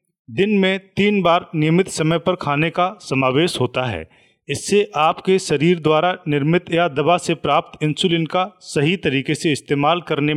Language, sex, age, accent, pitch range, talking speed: English, male, 40-59, Indian, 140-175 Hz, 160 wpm